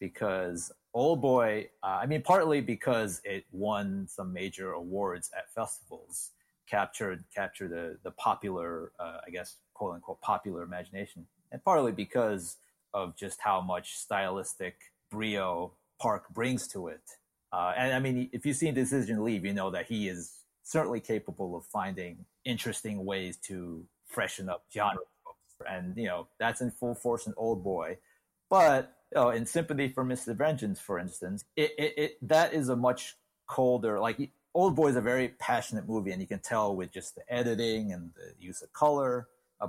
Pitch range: 95-125 Hz